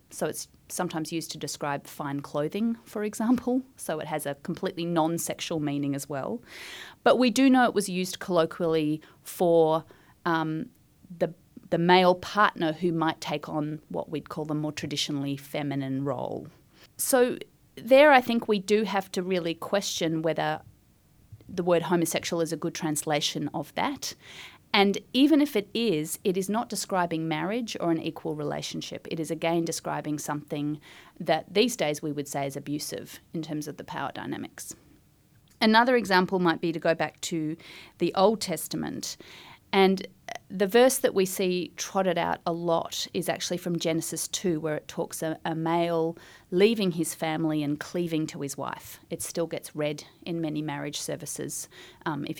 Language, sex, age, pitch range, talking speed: English, female, 30-49, 155-190 Hz, 170 wpm